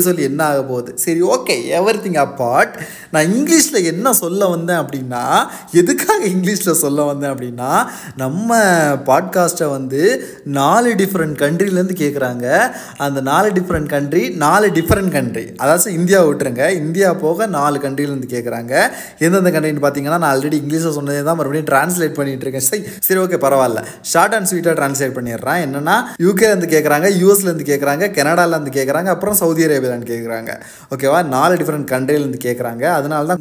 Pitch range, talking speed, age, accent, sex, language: 140-185 Hz, 35 wpm, 20-39, native, male, Tamil